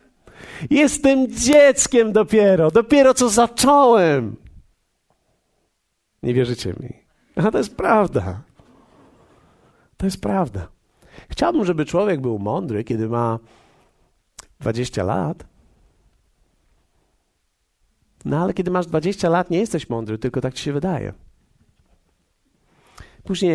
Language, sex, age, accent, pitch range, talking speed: Polish, male, 50-69, native, 125-195 Hz, 100 wpm